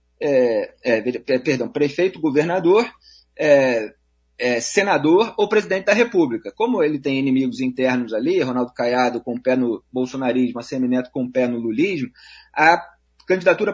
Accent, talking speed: Brazilian, 155 wpm